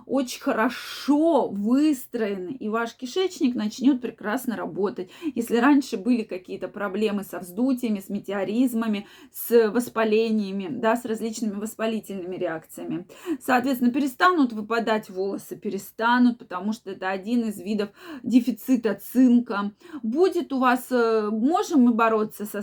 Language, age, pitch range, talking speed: Russian, 20-39, 220-265 Hz, 120 wpm